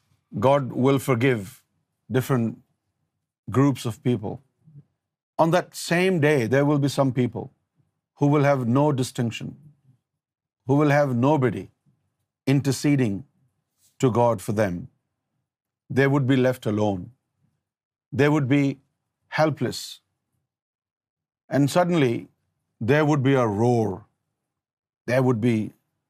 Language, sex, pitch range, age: Urdu, male, 125-150 Hz, 50-69